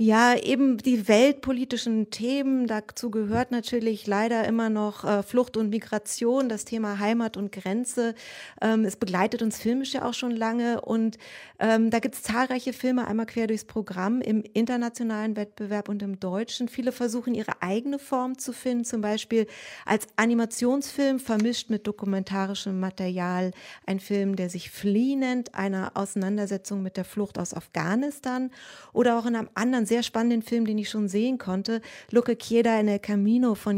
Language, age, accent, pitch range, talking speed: German, 30-49, German, 200-240 Hz, 165 wpm